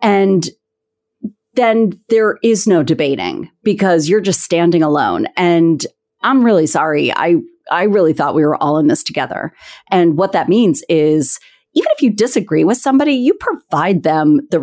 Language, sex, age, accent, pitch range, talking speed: English, female, 40-59, American, 165-275 Hz, 165 wpm